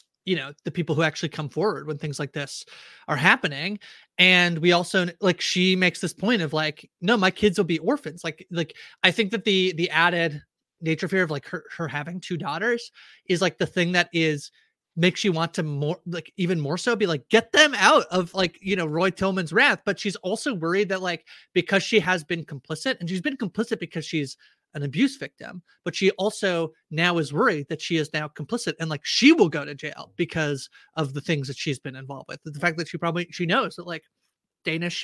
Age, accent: 30-49, American